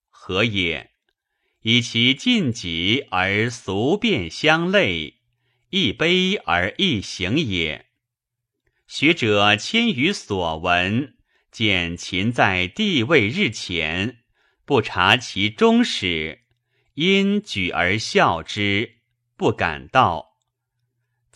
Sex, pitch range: male, 95-135 Hz